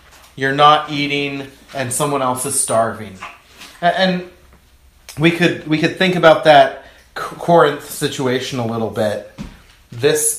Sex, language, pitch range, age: male, English, 125-160 Hz, 30-49